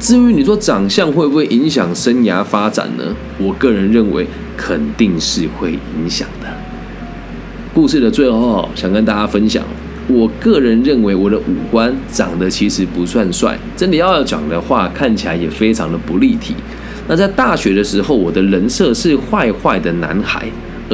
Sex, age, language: male, 20-39, Chinese